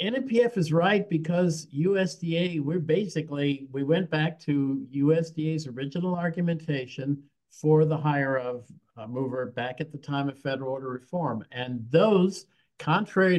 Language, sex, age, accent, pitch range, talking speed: English, male, 50-69, American, 130-160 Hz, 135 wpm